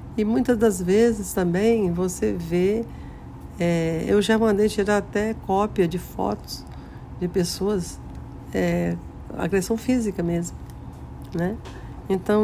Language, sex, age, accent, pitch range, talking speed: Portuguese, female, 60-79, Brazilian, 160-205 Hz, 105 wpm